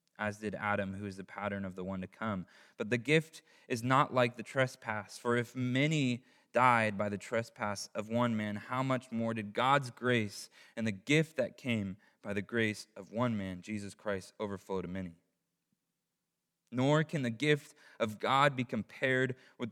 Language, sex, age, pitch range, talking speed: English, male, 20-39, 100-125 Hz, 185 wpm